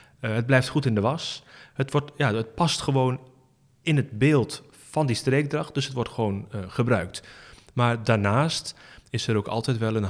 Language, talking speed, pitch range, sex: Dutch, 195 wpm, 105-135 Hz, male